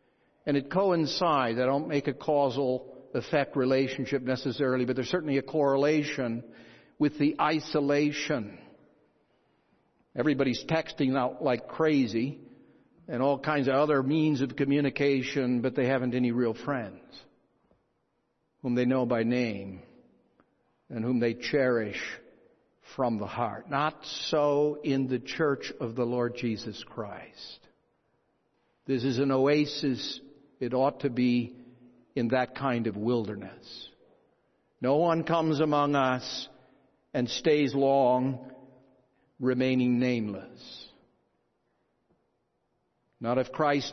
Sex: male